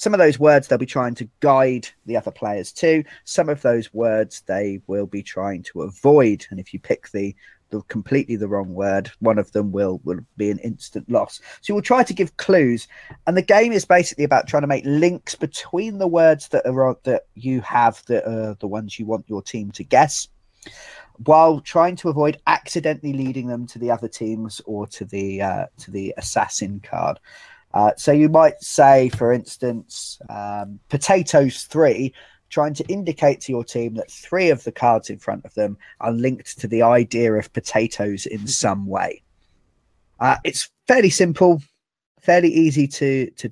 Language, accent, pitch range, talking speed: English, British, 110-150 Hz, 190 wpm